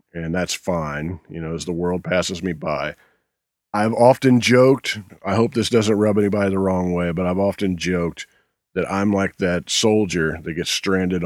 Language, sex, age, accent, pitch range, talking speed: English, male, 40-59, American, 85-105 Hz, 185 wpm